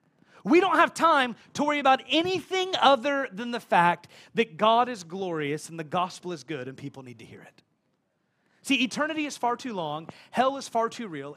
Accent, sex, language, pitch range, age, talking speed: American, male, English, 175-245 Hz, 30-49, 200 wpm